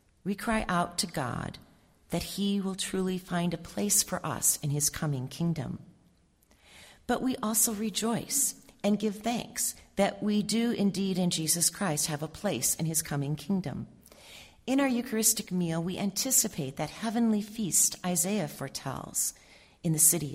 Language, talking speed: English, 155 wpm